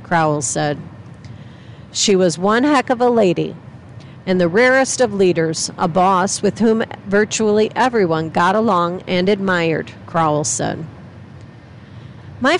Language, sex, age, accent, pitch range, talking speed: English, female, 50-69, American, 165-220 Hz, 130 wpm